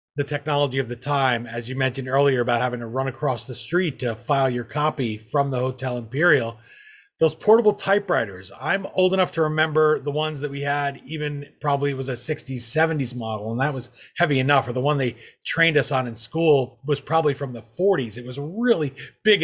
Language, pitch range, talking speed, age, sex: English, 130-160 Hz, 205 wpm, 30-49, male